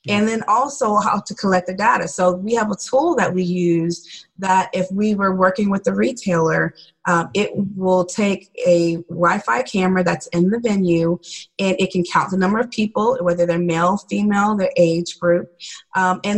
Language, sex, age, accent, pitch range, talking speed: English, female, 30-49, American, 175-210 Hz, 190 wpm